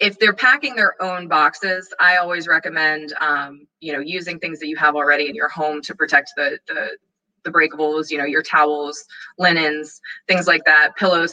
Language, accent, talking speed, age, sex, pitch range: English, American, 190 wpm, 20-39, female, 155-190 Hz